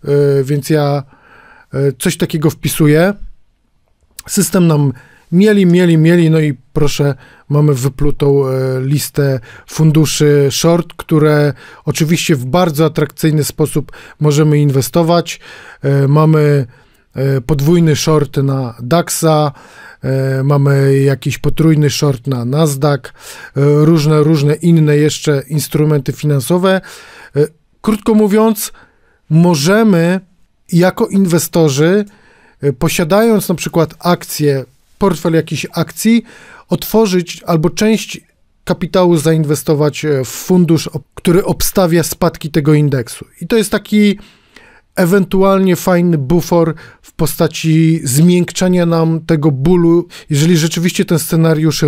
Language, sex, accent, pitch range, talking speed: Polish, male, native, 145-175 Hz, 95 wpm